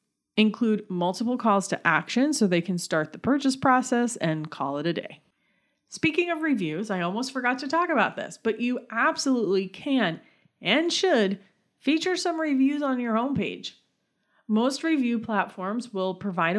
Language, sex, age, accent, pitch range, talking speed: English, female, 30-49, American, 180-255 Hz, 160 wpm